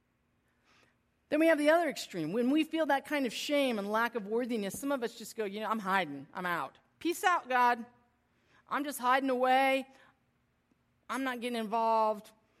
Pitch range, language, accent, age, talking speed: 175-245 Hz, English, American, 40-59, 185 wpm